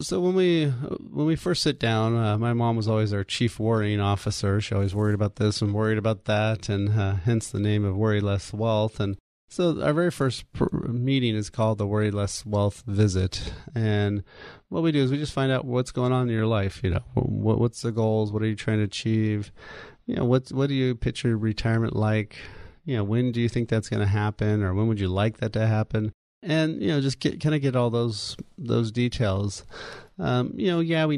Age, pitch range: 30-49, 105-120 Hz